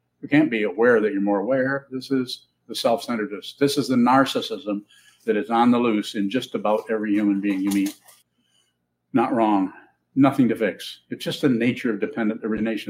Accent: American